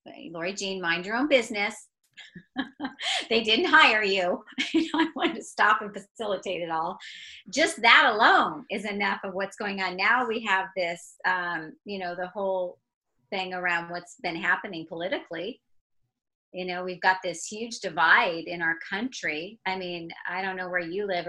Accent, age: American, 30-49